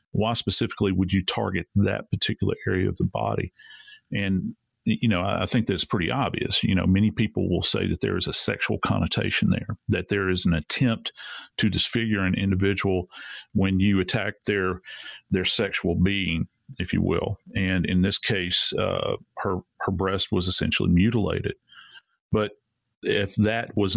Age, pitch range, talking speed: 40-59, 95-105 Hz, 165 wpm